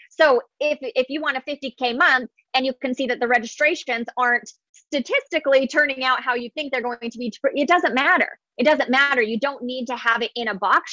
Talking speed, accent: 225 wpm, American